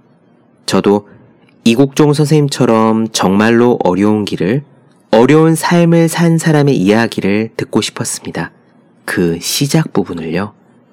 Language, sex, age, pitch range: Korean, male, 40-59, 100-135 Hz